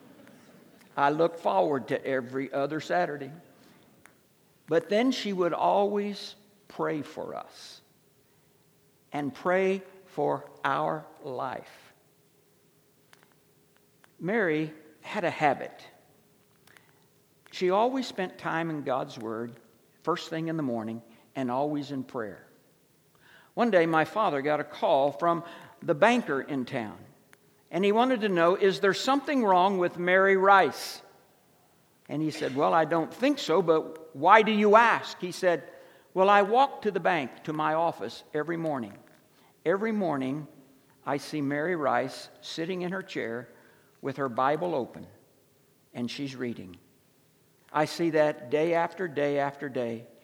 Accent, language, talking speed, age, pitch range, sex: American, English, 135 wpm, 60-79, 140-190 Hz, male